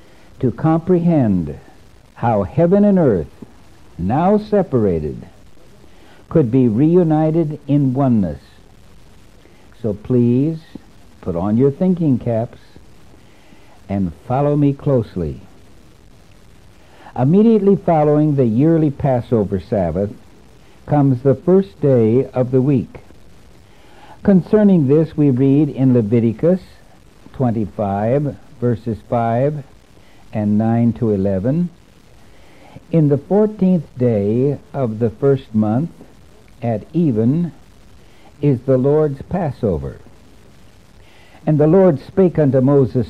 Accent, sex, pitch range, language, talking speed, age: American, male, 110-155 Hz, English, 100 wpm, 60-79